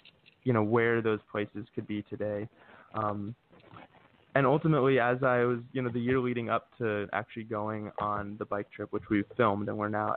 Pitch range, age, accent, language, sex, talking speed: 105-120 Hz, 20-39, American, English, male, 195 wpm